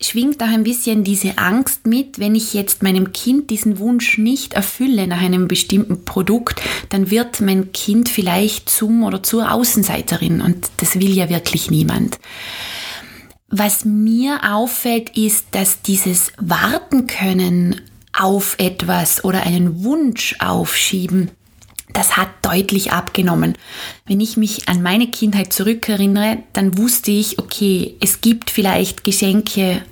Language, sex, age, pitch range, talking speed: German, female, 20-39, 185-220 Hz, 135 wpm